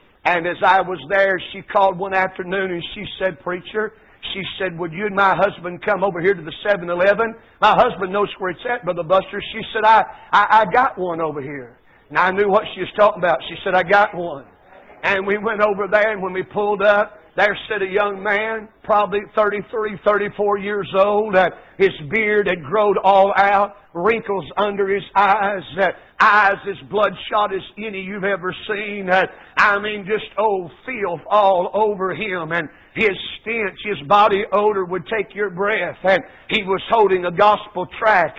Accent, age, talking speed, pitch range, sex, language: American, 50-69, 190 wpm, 185-210 Hz, male, English